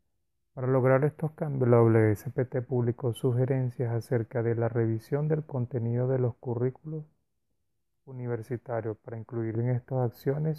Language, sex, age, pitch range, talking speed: Spanish, male, 30-49, 115-130 Hz, 130 wpm